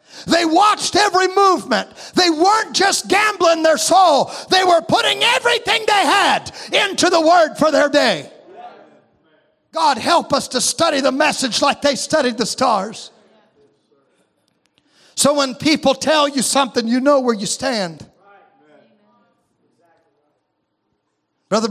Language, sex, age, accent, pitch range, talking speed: English, male, 50-69, American, 230-315 Hz, 125 wpm